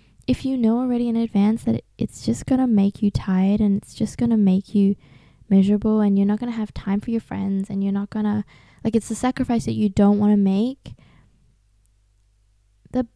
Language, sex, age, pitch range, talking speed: English, female, 10-29, 145-215 Hz, 220 wpm